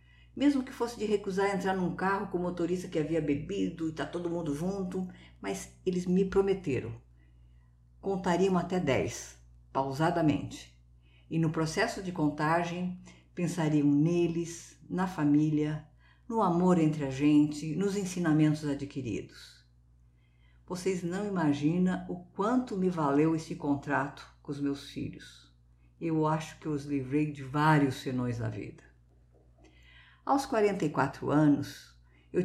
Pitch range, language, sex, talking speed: 130-180 Hz, Portuguese, female, 135 wpm